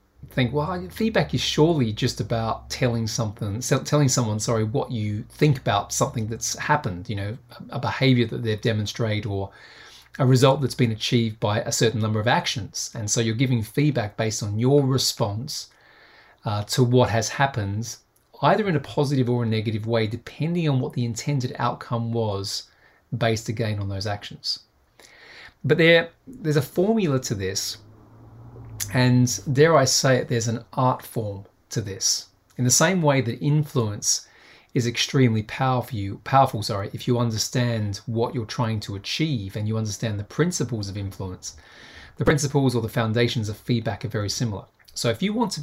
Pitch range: 110-130 Hz